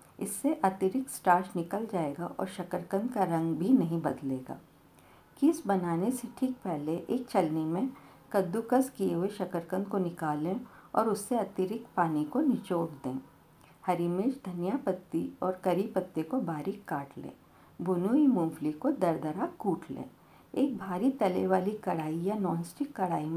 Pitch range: 165-220 Hz